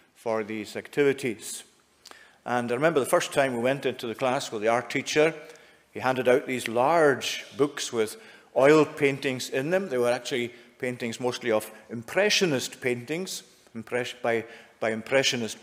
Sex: male